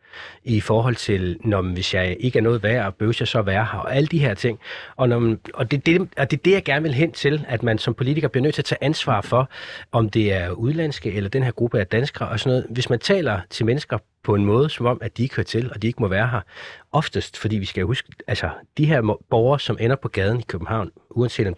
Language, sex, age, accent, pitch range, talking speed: Danish, male, 30-49, native, 105-130 Hz, 270 wpm